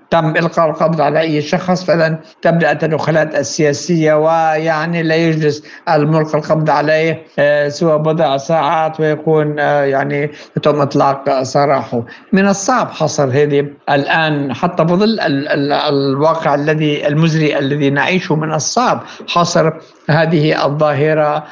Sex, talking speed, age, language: male, 125 wpm, 60-79, Arabic